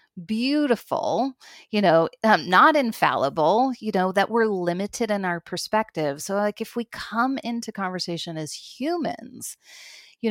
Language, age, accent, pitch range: English, 30-49, American, 175-235 Hz